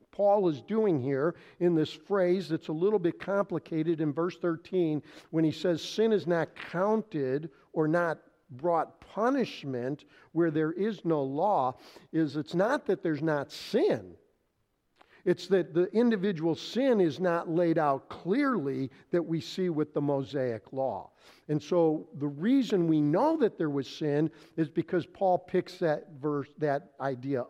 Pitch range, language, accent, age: 140-175 Hz, English, American, 50-69